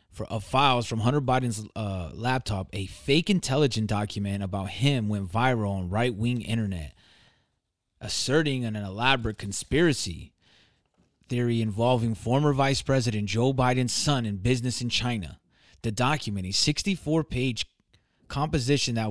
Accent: American